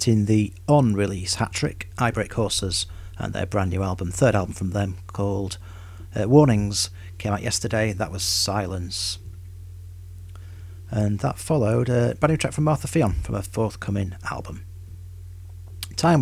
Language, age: English, 40-59